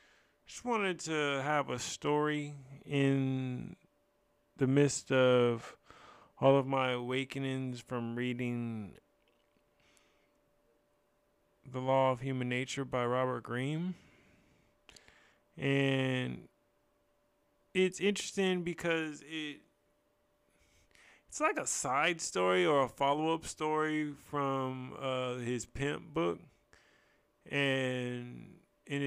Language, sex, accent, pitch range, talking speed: English, male, American, 120-145 Hz, 90 wpm